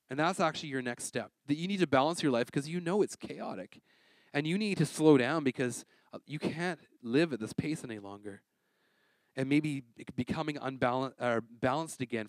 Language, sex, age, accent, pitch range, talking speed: English, male, 30-49, American, 115-150 Hz, 195 wpm